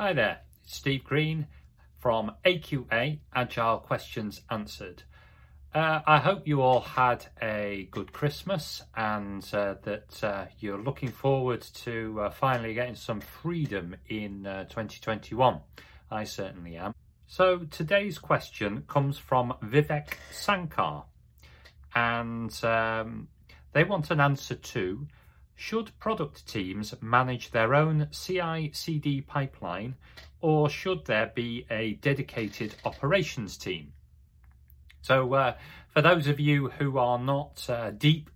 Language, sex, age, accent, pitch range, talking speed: English, male, 40-59, British, 110-150 Hz, 125 wpm